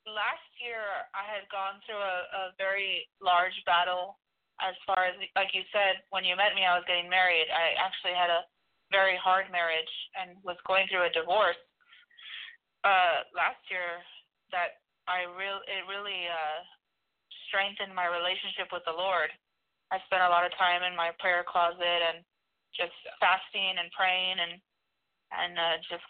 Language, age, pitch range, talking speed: English, 30-49, 175-195 Hz, 165 wpm